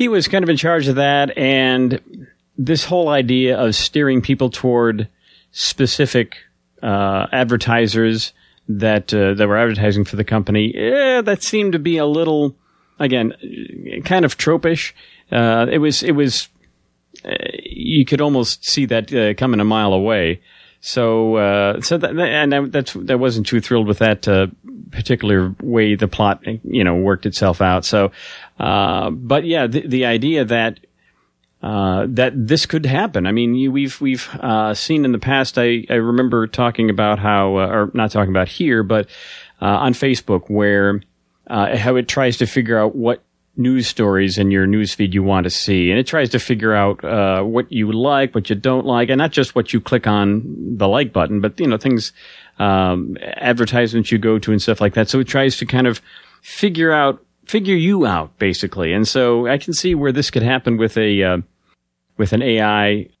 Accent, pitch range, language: American, 105-135 Hz, English